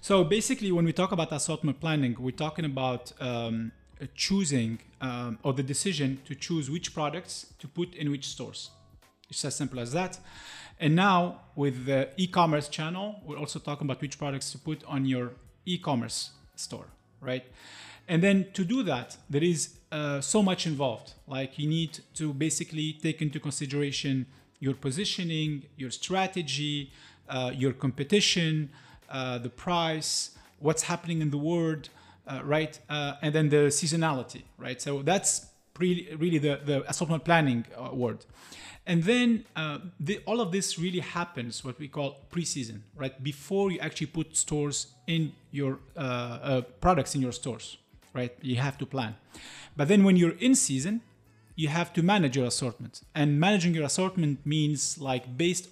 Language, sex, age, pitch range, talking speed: English, male, 40-59, 130-170 Hz, 165 wpm